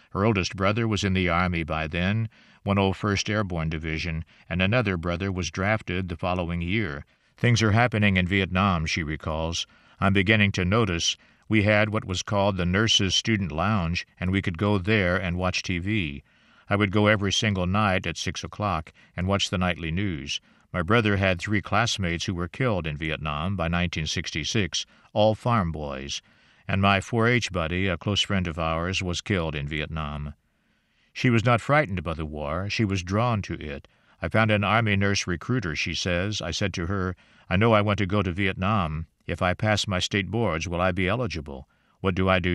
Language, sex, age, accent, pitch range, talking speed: English, male, 50-69, American, 85-105 Hz, 195 wpm